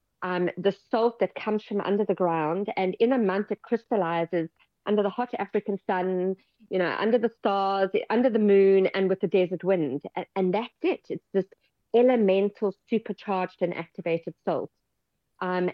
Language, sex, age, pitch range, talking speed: English, female, 40-59, 175-205 Hz, 170 wpm